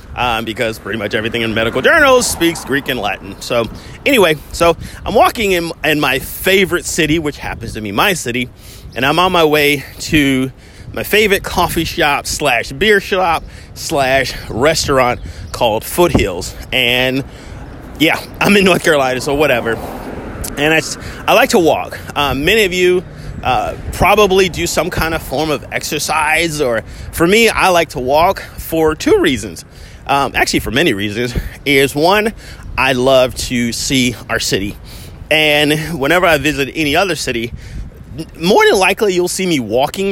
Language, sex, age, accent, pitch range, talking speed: English, male, 30-49, American, 125-175 Hz, 165 wpm